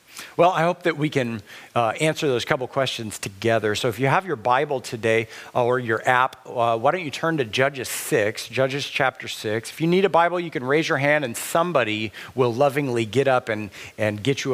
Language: English